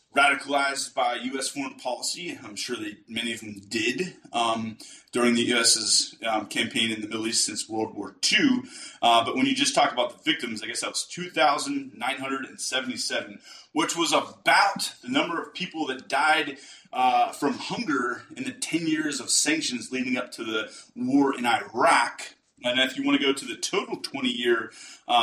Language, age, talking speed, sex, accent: English, 30-49, 180 wpm, male, American